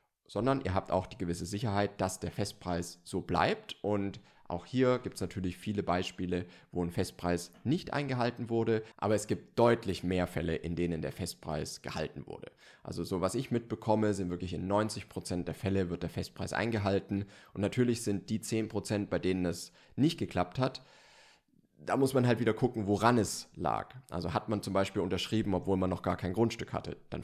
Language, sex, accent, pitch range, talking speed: German, male, German, 90-120 Hz, 190 wpm